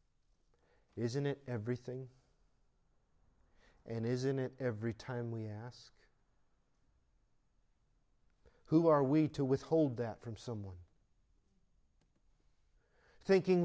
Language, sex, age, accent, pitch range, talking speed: English, male, 40-59, American, 115-190 Hz, 85 wpm